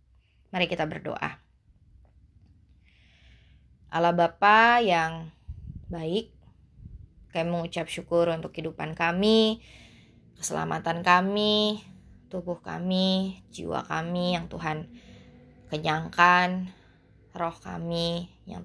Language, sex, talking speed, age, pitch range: Indonesian, female, 80 wpm, 20-39, 155-175 Hz